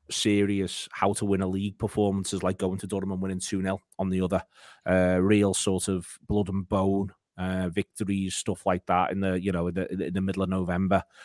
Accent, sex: British, male